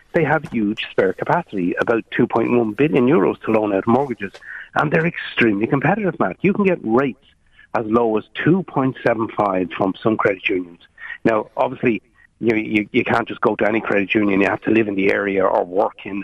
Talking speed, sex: 195 wpm, male